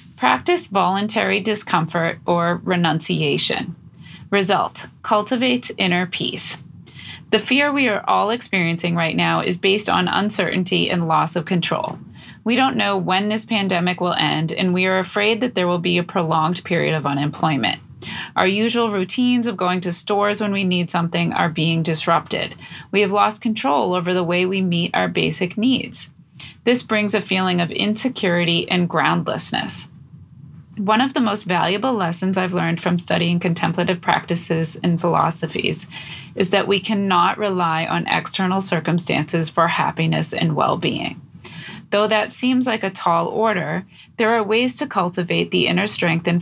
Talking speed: 160 wpm